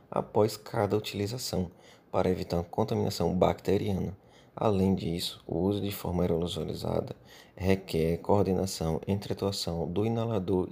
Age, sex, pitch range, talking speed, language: 20-39, male, 90-105 Hz, 120 wpm, Portuguese